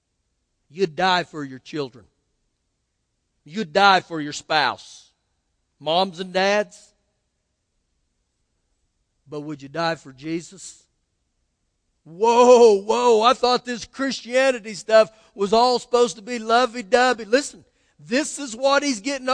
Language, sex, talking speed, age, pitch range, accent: English, male, 120 wpm, 50-69, 205-275 Hz, American